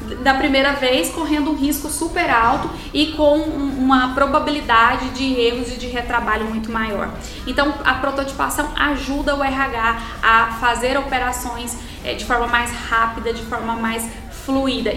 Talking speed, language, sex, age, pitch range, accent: 150 wpm, Portuguese, female, 10-29, 245-300 Hz, Brazilian